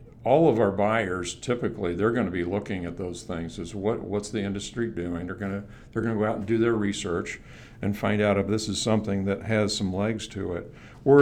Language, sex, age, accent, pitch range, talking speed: English, male, 60-79, American, 100-115 Hz, 235 wpm